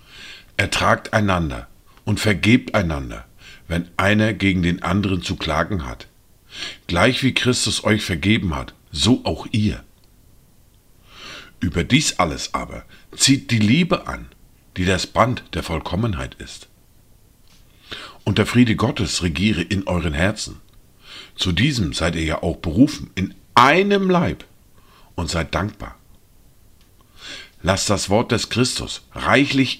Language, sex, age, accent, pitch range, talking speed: German, male, 50-69, German, 90-115 Hz, 125 wpm